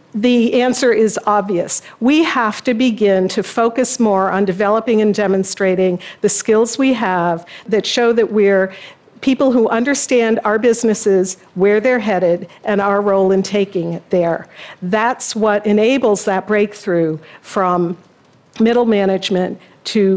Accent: American